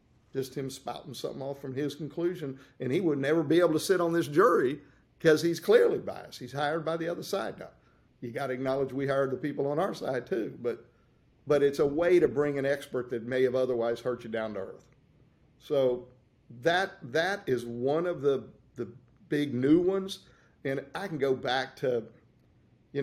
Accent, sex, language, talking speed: American, male, English, 205 wpm